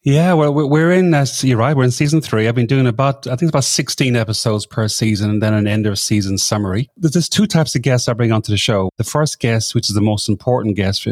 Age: 30-49